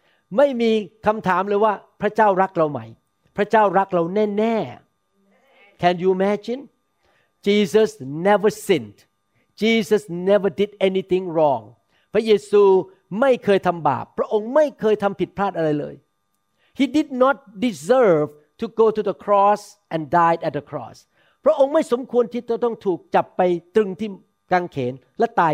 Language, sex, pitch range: Thai, male, 165-220 Hz